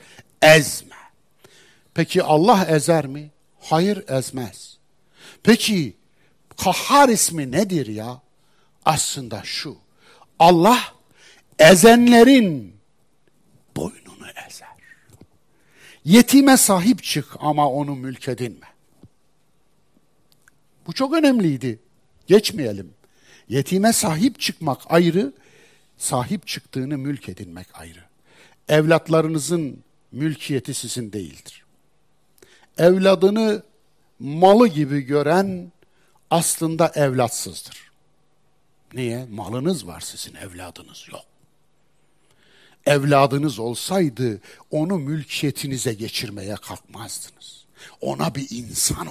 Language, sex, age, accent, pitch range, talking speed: Turkish, male, 60-79, native, 125-185 Hz, 75 wpm